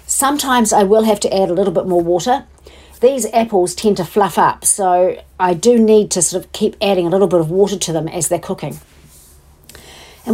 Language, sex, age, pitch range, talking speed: English, female, 50-69, 175-220 Hz, 215 wpm